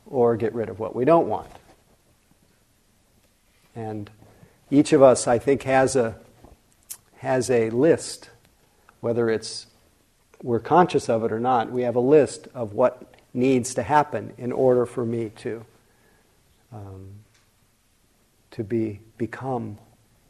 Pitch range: 110-135 Hz